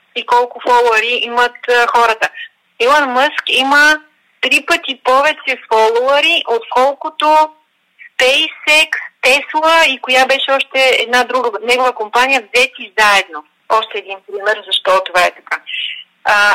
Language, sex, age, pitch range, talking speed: Bulgarian, female, 30-49, 220-290 Hz, 125 wpm